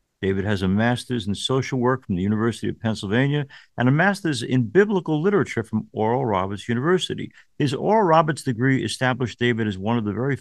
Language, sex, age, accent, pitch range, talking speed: English, male, 50-69, American, 110-140 Hz, 190 wpm